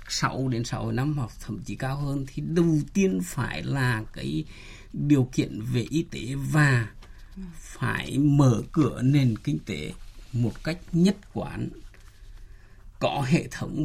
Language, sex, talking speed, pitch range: Vietnamese, male, 145 wpm, 115-160 Hz